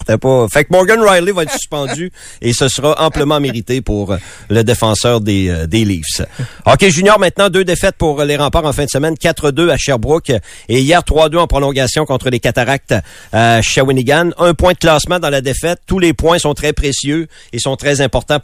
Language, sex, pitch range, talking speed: French, male, 120-155 Hz, 200 wpm